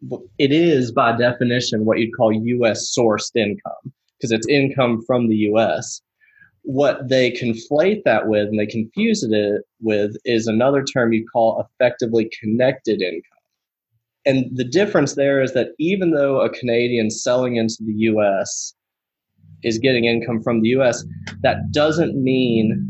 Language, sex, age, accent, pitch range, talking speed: English, male, 30-49, American, 115-135 Hz, 150 wpm